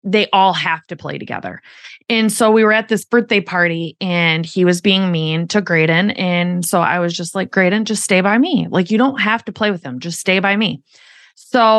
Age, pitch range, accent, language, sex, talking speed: 20-39, 170-230 Hz, American, English, female, 230 wpm